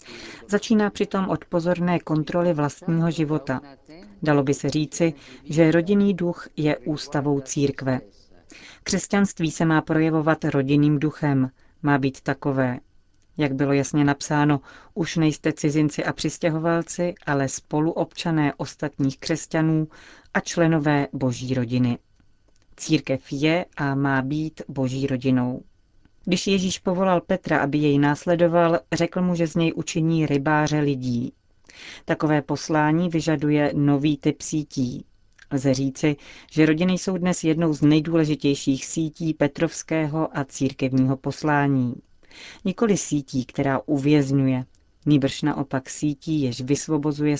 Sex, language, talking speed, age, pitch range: female, Czech, 120 wpm, 40-59, 135-160 Hz